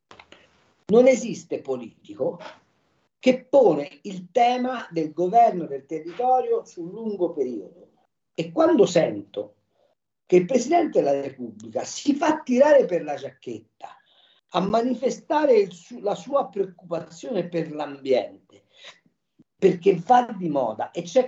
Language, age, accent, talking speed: Italian, 50-69, native, 120 wpm